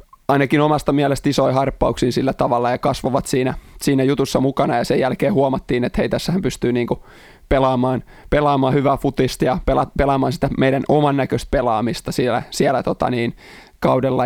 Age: 20-39